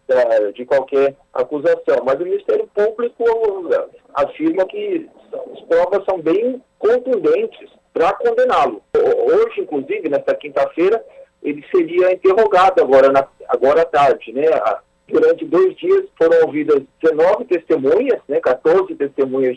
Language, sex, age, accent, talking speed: Portuguese, male, 50-69, Brazilian, 115 wpm